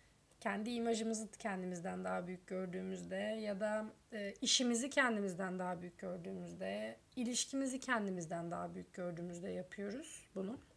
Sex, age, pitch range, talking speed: female, 30-49, 200-270 Hz, 115 wpm